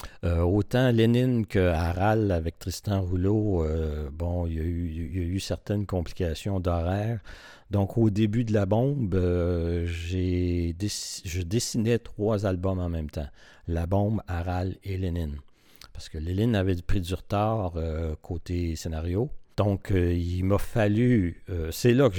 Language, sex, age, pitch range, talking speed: French, male, 50-69, 85-105 Hz, 155 wpm